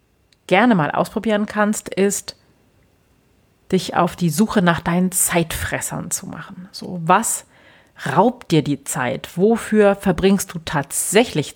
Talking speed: 125 wpm